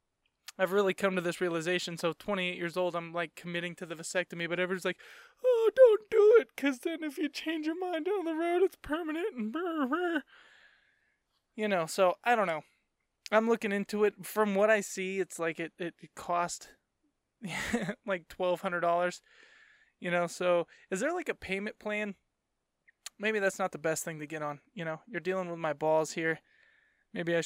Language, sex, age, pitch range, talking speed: English, male, 20-39, 170-260 Hz, 190 wpm